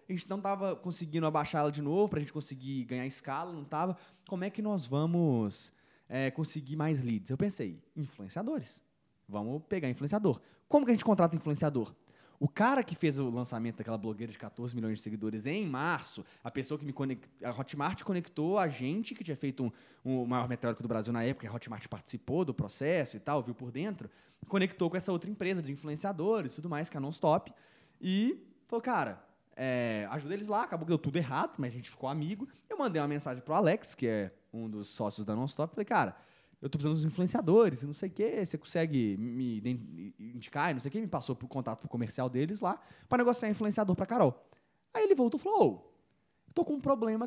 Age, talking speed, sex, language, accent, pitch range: 20-39, 220 wpm, male, Portuguese, Brazilian, 125-190 Hz